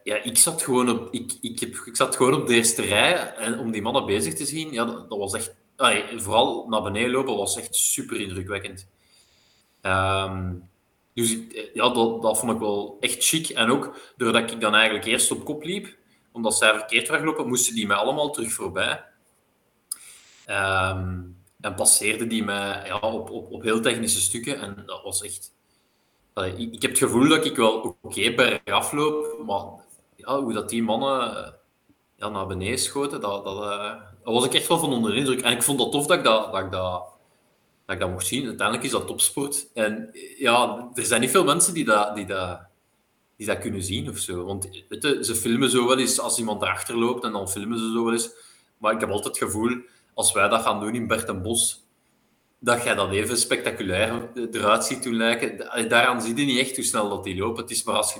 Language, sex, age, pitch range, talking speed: Dutch, male, 20-39, 100-125 Hz, 205 wpm